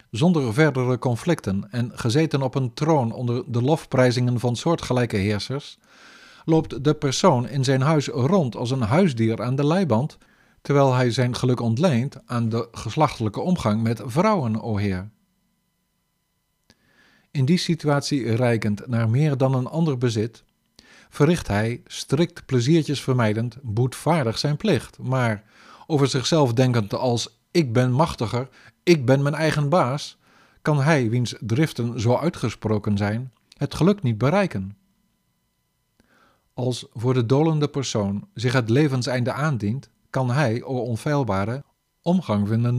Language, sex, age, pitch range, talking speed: Dutch, male, 50-69, 115-150 Hz, 135 wpm